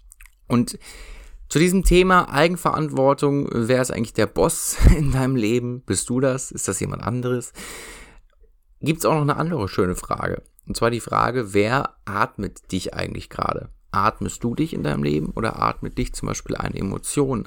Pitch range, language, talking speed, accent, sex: 95-120 Hz, German, 170 wpm, German, male